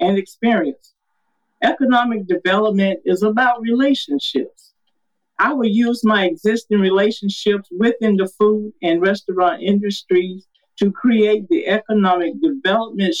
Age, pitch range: 50-69, 195-255 Hz